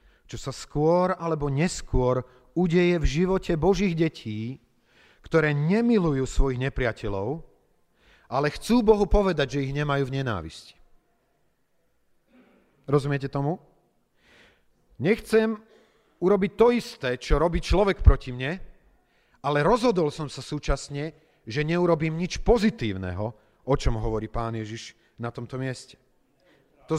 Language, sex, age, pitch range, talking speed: Slovak, male, 40-59, 130-175 Hz, 115 wpm